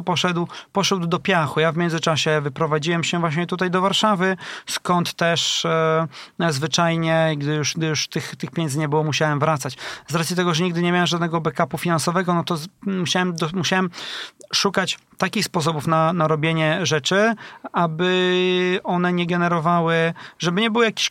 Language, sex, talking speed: Polish, male, 155 wpm